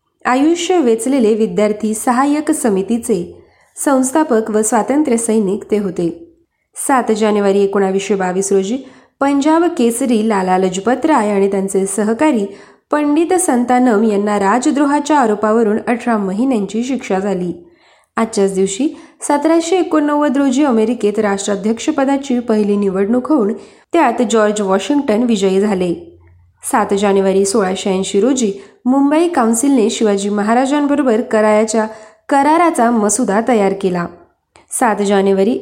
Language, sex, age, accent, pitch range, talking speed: Marathi, female, 20-39, native, 200-270 Hz, 105 wpm